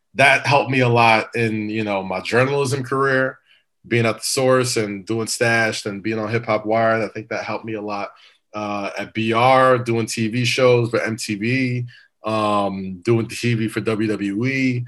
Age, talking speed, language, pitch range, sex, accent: 20-39, 180 wpm, English, 110-130 Hz, male, American